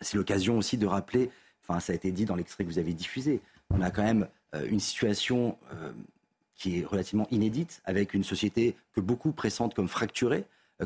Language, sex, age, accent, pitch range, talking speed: French, male, 40-59, French, 100-130 Hz, 190 wpm